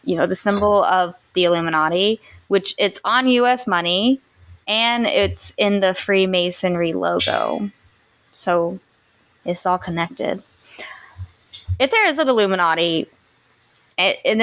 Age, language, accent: 20-39, English, American